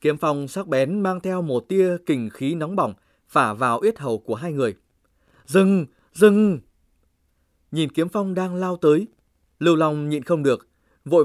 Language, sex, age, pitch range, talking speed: Vietnamese, male, 20-39, 135-180 Hz, 175 wpm